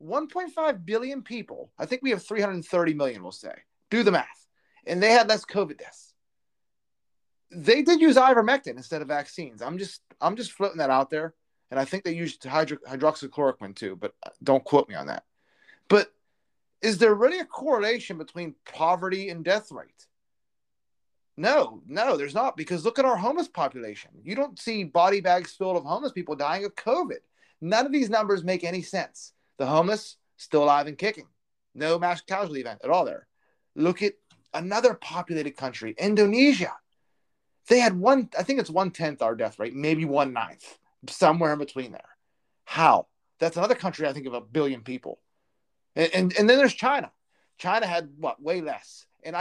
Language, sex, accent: English, male, American